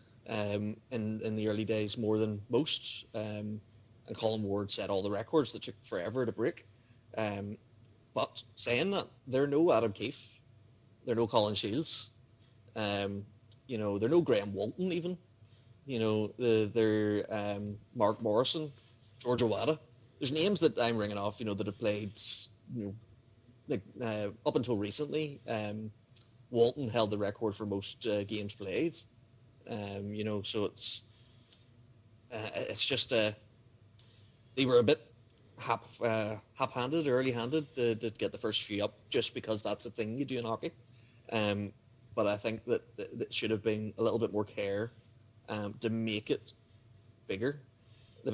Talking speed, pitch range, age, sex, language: 165 wpm, 110-120 Hz, 20-39, male, English